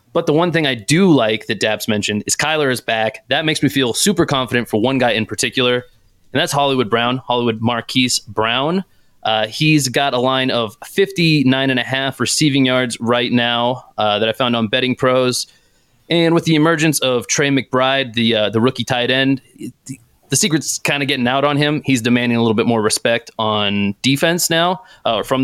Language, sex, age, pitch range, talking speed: English, male, 30-49, 115-140 Hz, 205 wpm